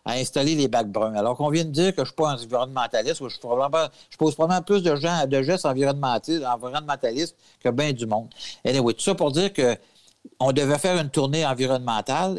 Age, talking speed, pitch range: 60-79, 225 wpm, 115-150 Hz